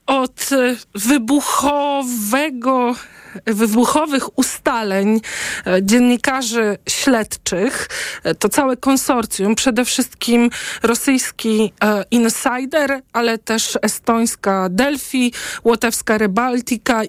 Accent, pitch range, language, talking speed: native, 210-260 Hz, Polish, 65 wpm